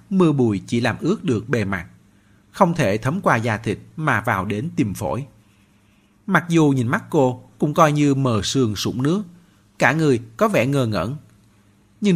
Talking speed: 190 wpm